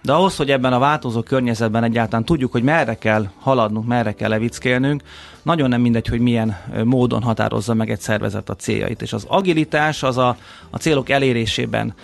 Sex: male